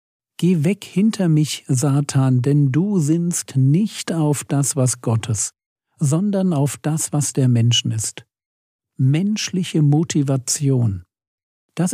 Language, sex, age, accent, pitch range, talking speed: German, male, 50-69, German, 125-160 Hz, 115 wpm